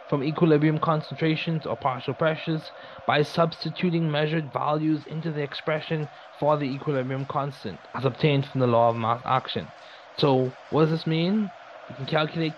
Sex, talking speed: male, 155 wpm